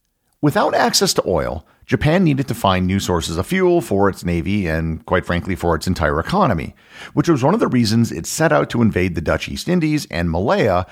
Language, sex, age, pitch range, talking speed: English, male, 50-69, 90-130 Hz, 215 wpm